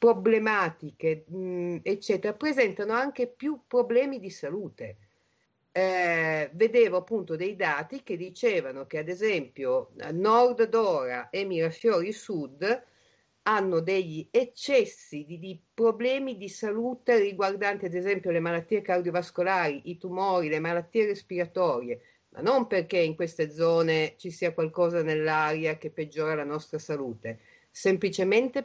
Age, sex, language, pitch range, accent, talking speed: 50-69, female, Italian, 170-225 Hz, native, 120 wpm